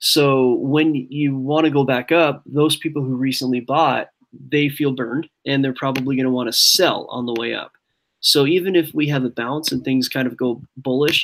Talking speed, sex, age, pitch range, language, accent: 205 wpm, male, 20-39, 125-145 Hz, English, American